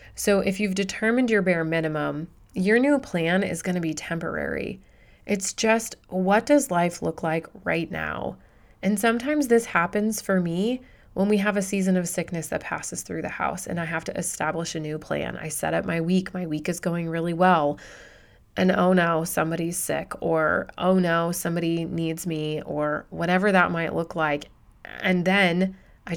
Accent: American